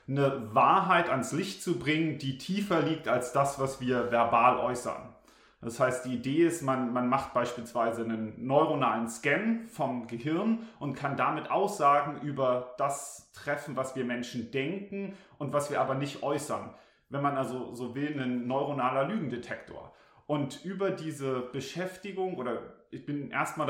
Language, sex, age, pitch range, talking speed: English, male, 30-49, 125-150 Hz, 155 wpm